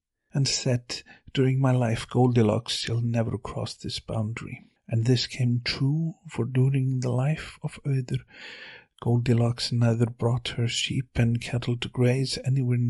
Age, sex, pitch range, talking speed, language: 50-69, male, 120-135 Hz, 145 wpm, English